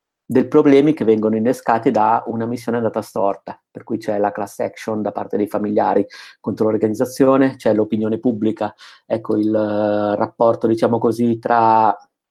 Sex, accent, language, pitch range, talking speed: male, native, Italian, 105-115 Hz, 155 wpm